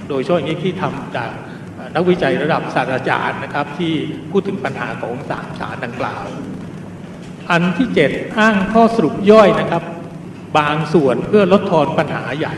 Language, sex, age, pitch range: Thai, male, 60-79, 135-180 Hz